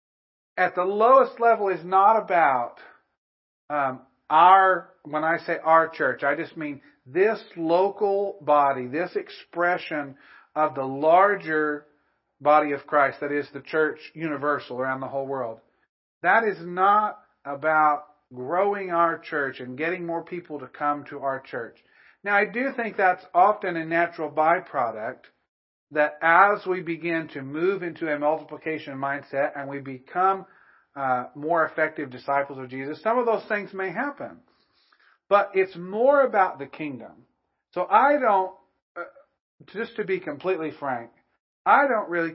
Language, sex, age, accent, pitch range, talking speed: English, male, 40-59, American, 145-195 Hz, 150 wpm